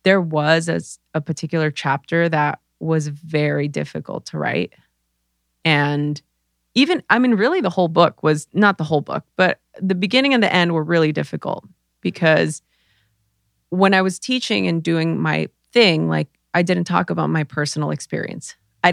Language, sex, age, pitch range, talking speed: English, female, 20-39, 140-180 Hz, 165 wpm